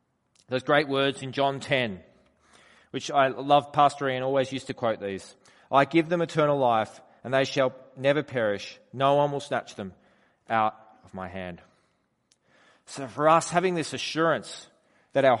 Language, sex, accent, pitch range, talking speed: English, male, Australian, 115-145 Hz, 170 wpm